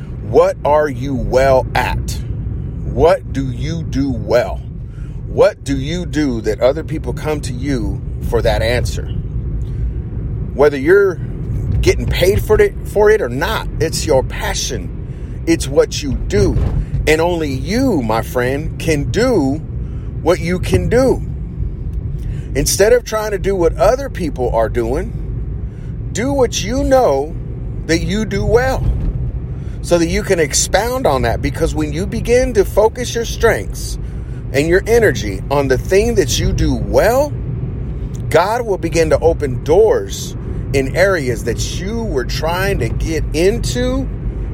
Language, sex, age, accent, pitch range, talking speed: English, male, 40-59, American, 120-155 Hz, 145 wpm